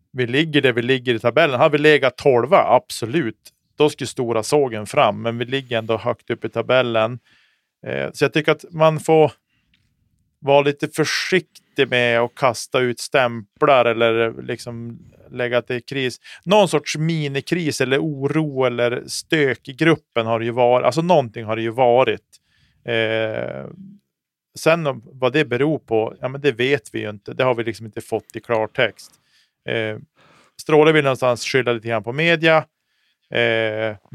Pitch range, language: 115-145 Hz, Swedish